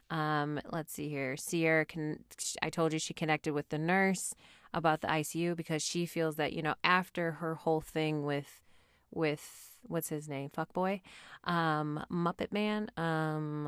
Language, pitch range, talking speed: English, 150-175 Hz, 170 wpm